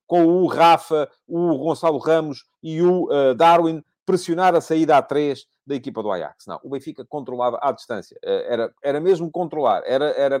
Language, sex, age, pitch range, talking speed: Portuguese, male, 40-59, 125-185 Hz, 180 wpm